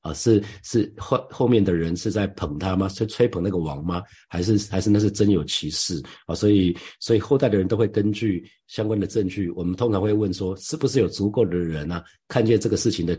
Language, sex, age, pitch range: Chinese, male, 50-69, 90-110 Hz